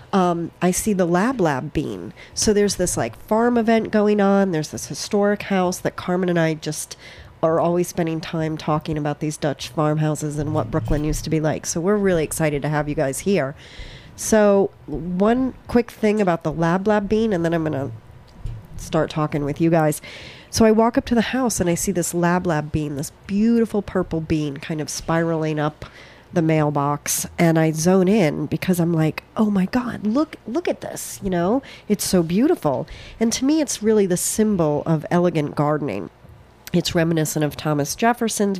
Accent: American